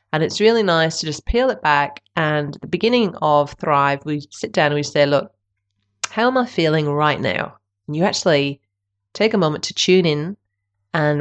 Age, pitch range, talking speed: 30-49, 145-175 Hz, 200 wpm